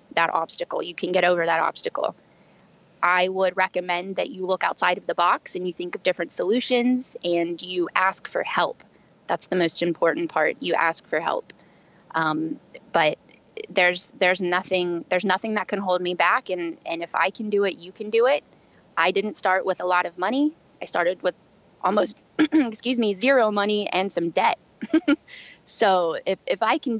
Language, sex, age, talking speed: English, female, 20-39, 190 wpm